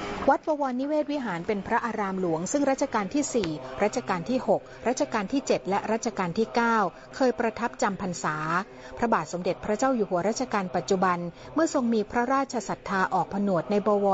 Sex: female